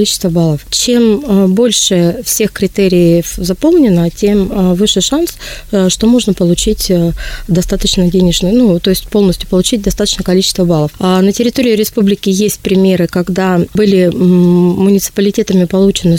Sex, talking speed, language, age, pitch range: female, 120 wpm, Russian, 20-39, 175-210 Hz